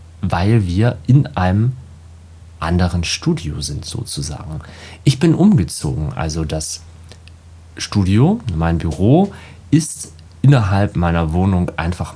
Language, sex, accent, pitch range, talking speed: German, male, German, 85-120 Hz, 105 wpm